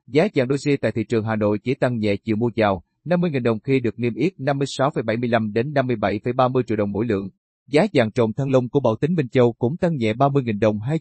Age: 30-49